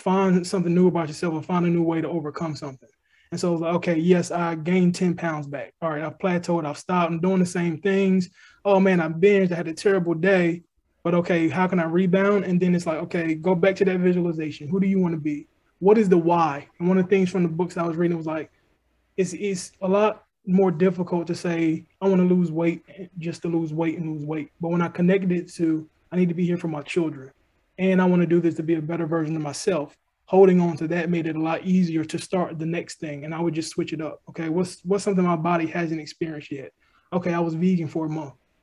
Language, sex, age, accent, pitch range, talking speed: English, male, 20-39, American, 165-185 Hz, 260 wpm